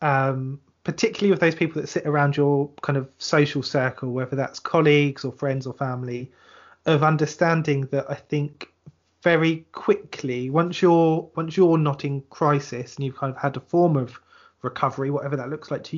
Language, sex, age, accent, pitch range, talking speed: English, male, 20-39, British, 135-160 Hz, 180 wpm